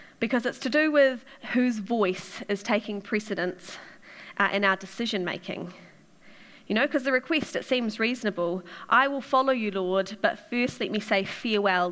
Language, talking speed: English, 165 wpm